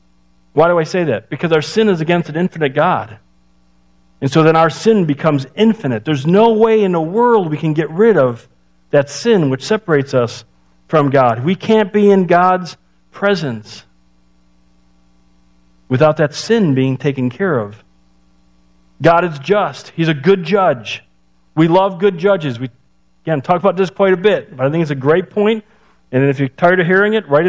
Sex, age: male, 50-69